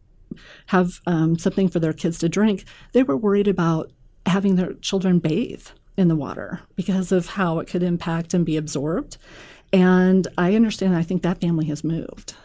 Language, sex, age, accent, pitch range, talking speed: English, female, 40-59, American, 170-200 Hz, 180 wpm